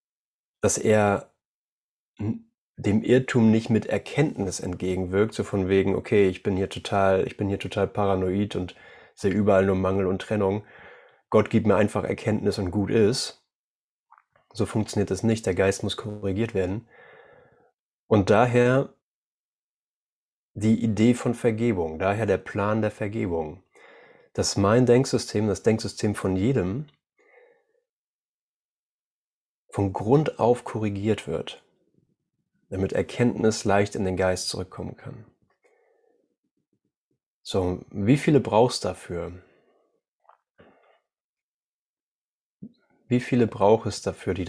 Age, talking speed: 30-49, 120 wpm